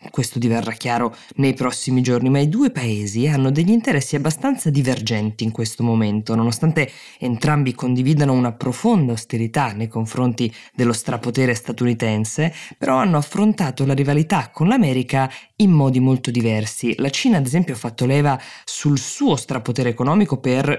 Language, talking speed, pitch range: Italian, 150 wpm, 120-145 Hz